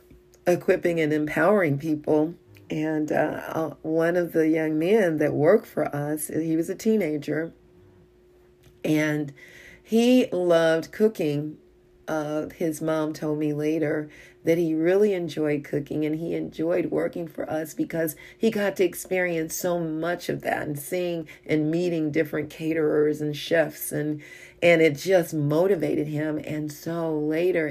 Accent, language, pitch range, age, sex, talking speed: American, English, 150-175 Hz, 40-59, female, 145 wpm